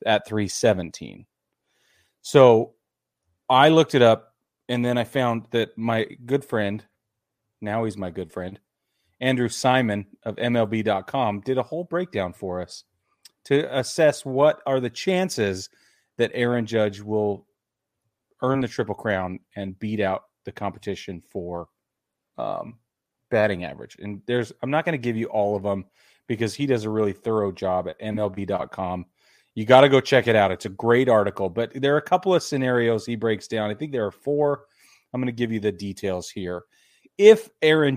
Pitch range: 100-135 Hz